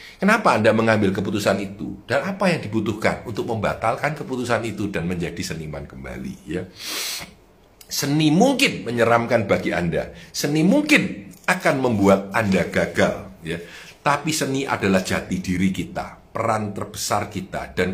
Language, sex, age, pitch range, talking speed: Indonesian, male, 50-69, 95-150 Hz, 135 wpm